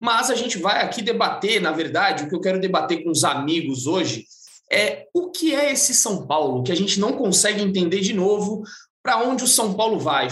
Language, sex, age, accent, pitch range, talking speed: Portuguese, male, 20-39, Brazilian, 180-230 Hz, 220 wpm